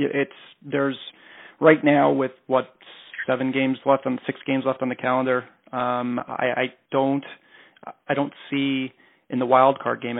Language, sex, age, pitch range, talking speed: English, male, 40-59, 115-130 Hz, 165 wpm